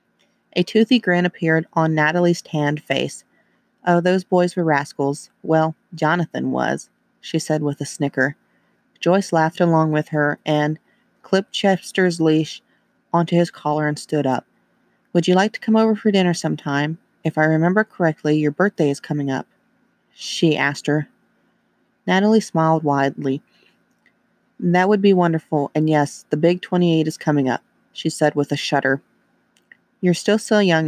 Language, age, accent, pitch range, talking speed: English, 30-49, American, 150-185 Hz, 155 wpm